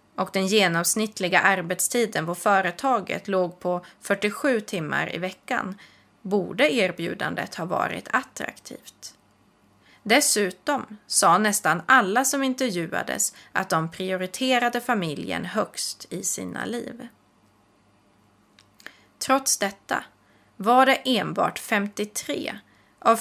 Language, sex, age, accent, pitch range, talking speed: Swedish, female, 30-49, native, 175-240 Hz, 100 wpm